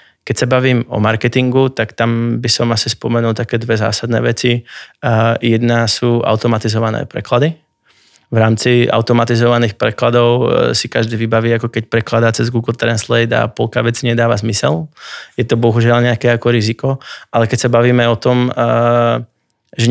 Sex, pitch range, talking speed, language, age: male, 115-120 Hz, 150 wpm, Czech, 20-39